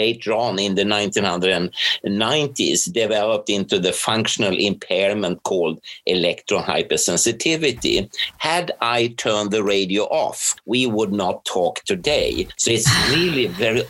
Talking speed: 120 wpm